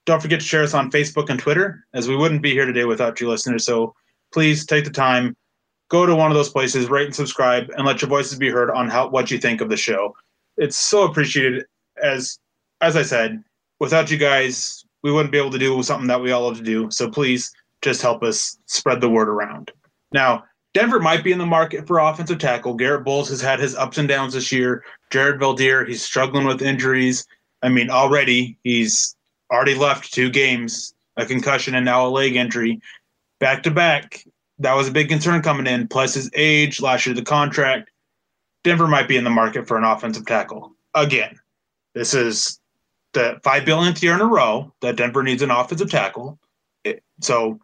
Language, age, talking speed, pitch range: English, 20-39, 205 wpm, 125-150 Hz